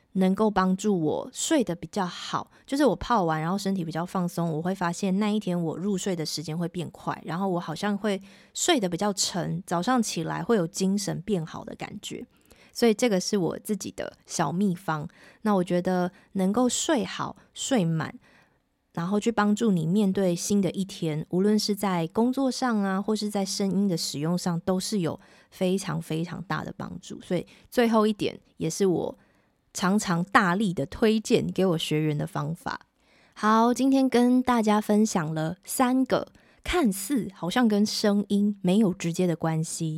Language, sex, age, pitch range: Chinese, female, 20-39, 175-215 Hz